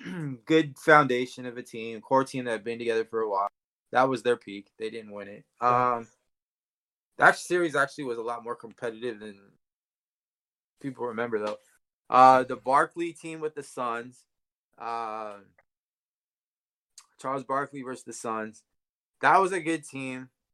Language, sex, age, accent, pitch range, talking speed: English, male, 20-39, American, 115-140 Hz, 155 wpm